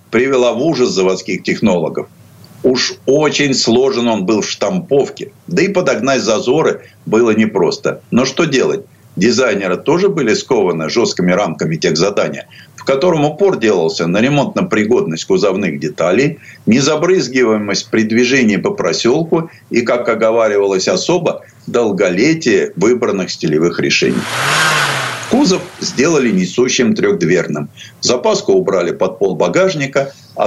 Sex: male